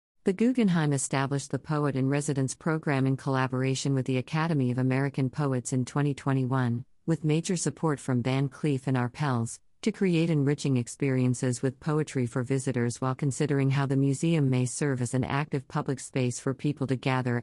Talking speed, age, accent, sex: 170 wpm, 50-69, American, female